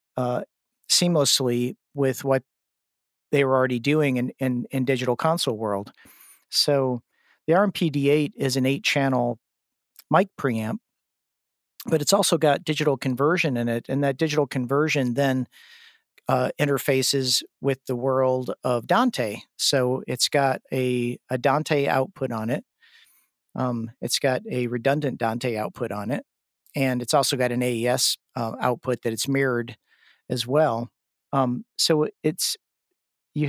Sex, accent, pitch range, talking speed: male, American, 125-145 Hz, 140 wpm